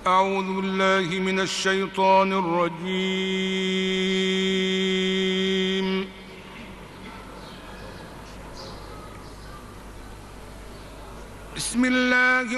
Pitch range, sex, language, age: 190-250 Hz, male, Arabic, 60-79